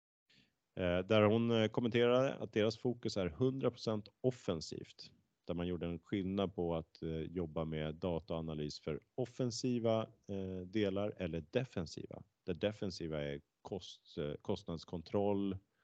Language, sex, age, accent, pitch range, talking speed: Swedish, male, 30-49, Norwegian, 80-110 Hz, 110 wpm